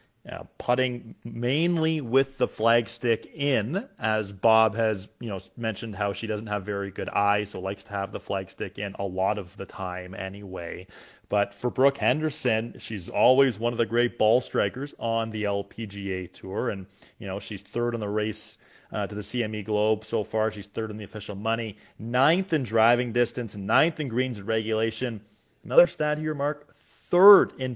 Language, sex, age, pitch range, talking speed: English, male, 30-49, 105-130 Hz, 185 wpm